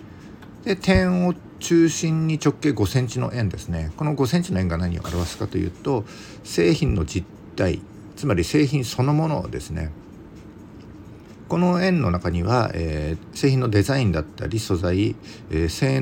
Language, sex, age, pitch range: Japanese, male, 50-69, 95-135 Hz